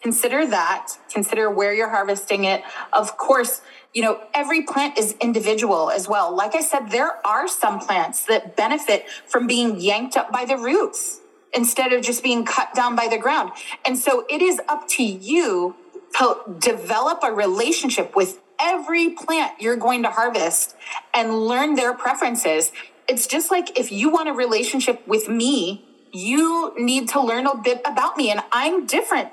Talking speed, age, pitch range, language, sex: 175 wpm, 30-49, 215-285 Hz, English, female